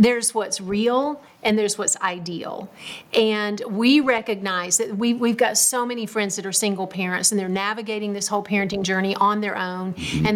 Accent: American